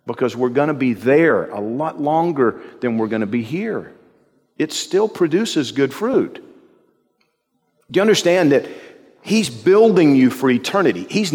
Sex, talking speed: male, 160 wpm